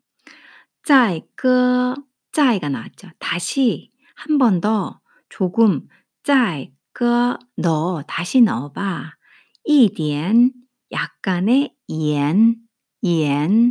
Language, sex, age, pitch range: Korean, female, 50-69, 180-255 Hz